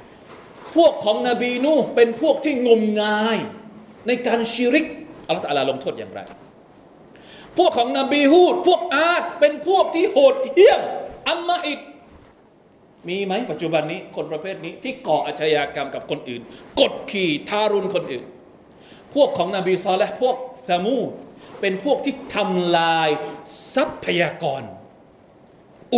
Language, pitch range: Thai, 190-280 Hz